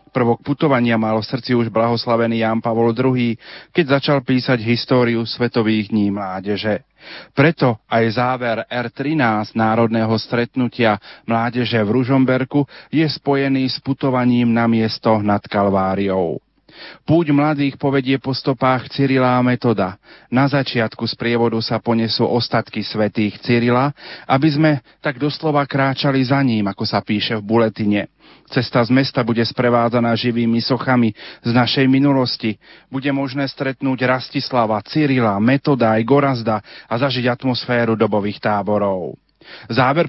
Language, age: Slovak, 40-59